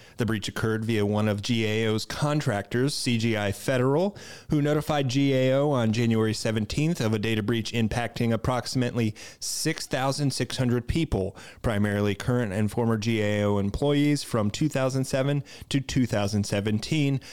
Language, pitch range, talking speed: English, 110-130 Hz, 120 wpm